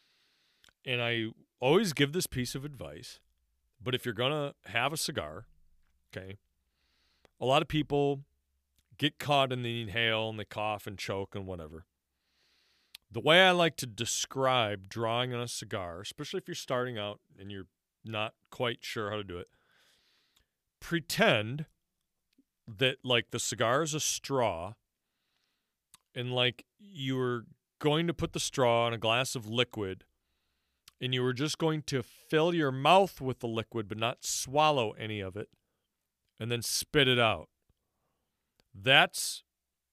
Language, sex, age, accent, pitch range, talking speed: English, male, 40-59, American, 105-140 Hz, 155 wpm